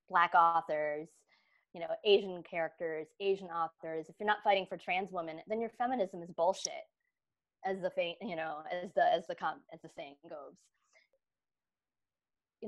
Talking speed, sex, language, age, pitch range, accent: 160 wpm, female, English, 20-39, 160-190 Hz, American